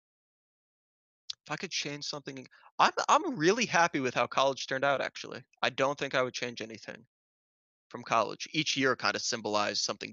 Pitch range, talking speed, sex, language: 110-130 Hz, 180 wpm, male, English